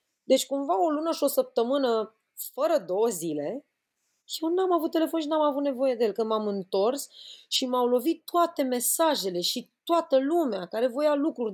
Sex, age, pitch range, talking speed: female, 20-39, 190-265 Hz, 175 wpm